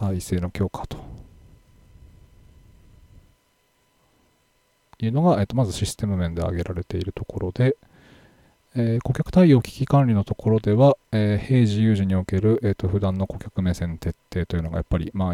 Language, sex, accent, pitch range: Japanese, male, native, 90-110 Hz